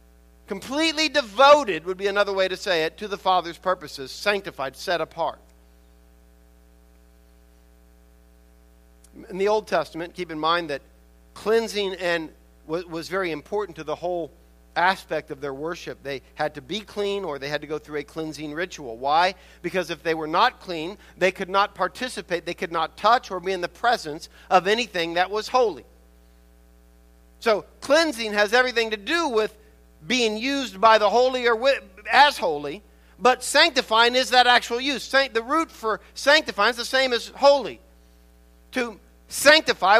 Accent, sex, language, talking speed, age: American, male, English, 160 wpm, 50-69